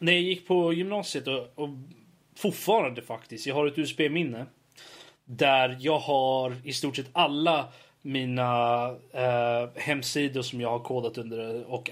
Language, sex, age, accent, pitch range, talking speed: Swedish, male, 30-49, native, 120-150 Hz, 145 wpm